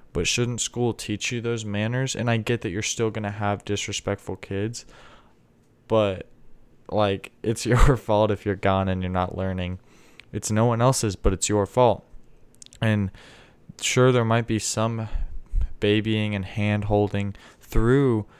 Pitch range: 100-120 Hz